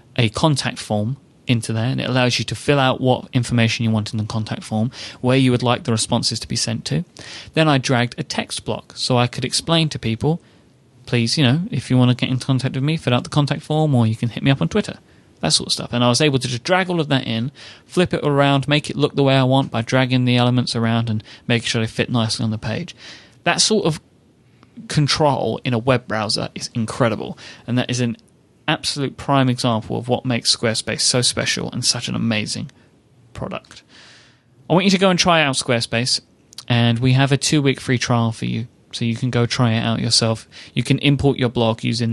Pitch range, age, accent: 115-140 Hz, 30-49, British